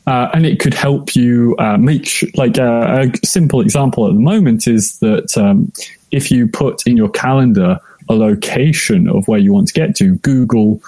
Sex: male